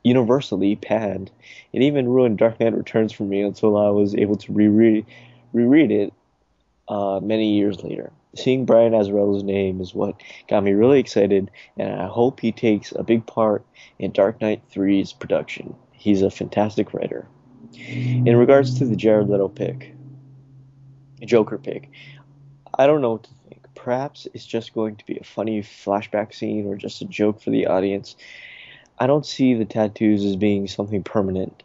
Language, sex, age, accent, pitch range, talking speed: English, male, 20-39, American, 100-120 Hz, 170 wpm